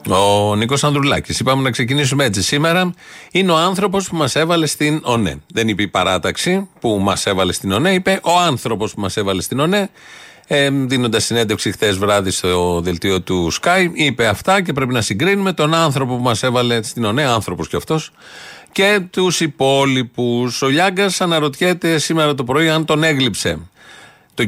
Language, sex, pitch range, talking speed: Greek, male, 110-155 Hz, 170 wpm